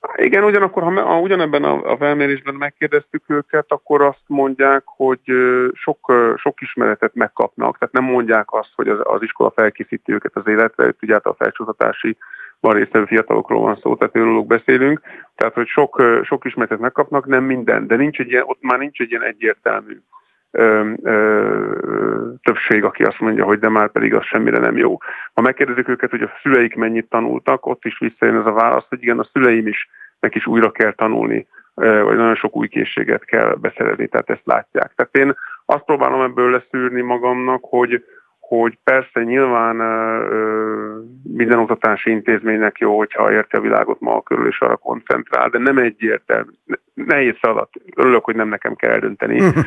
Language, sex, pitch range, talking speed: Hungarian, male, 110-130 Hz, 175 wpm